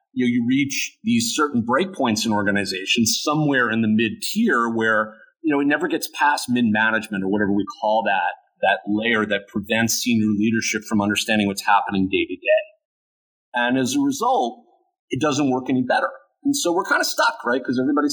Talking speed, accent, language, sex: 195 wpm, American, English, male